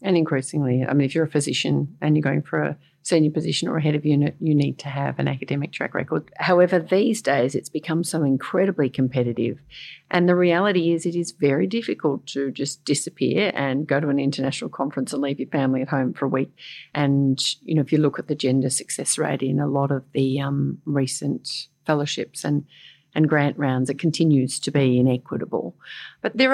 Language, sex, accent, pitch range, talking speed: English, female, Australian, 140-170 Hz, 210 wpm